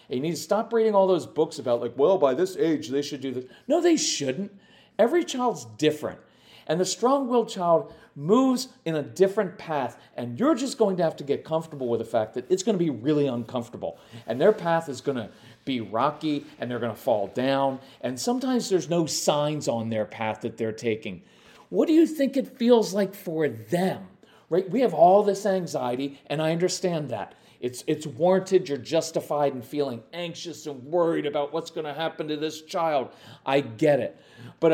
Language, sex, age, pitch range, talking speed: English, male, 40-59, 135-195 Hz, 205 wpm